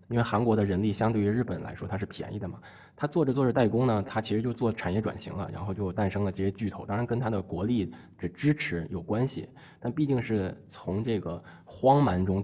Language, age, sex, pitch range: Chinese, 20-39, male, 95-130 Hz